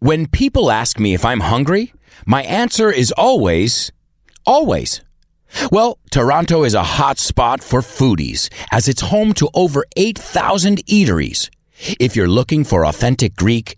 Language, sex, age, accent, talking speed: English, male, 40-59, American, 145 wpm